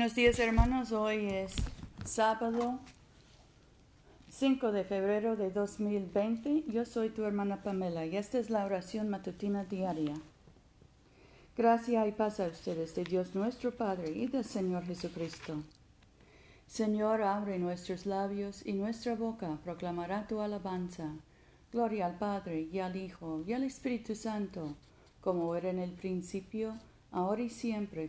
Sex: female